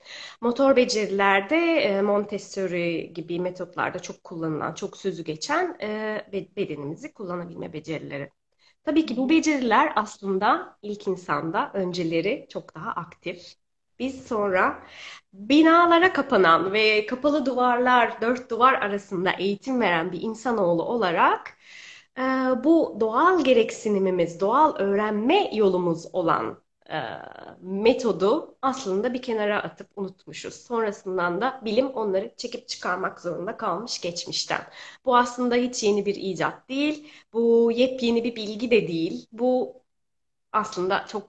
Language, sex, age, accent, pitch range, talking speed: Turkish, female, 30-49, native, 180-245 Hz, 110 wpm